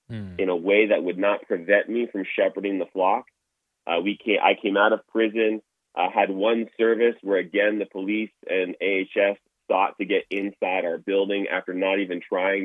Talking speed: 190 wpm